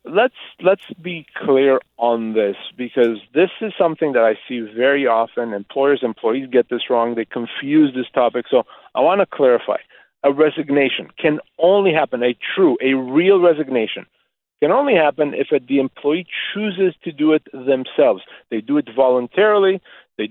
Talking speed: 170 wpm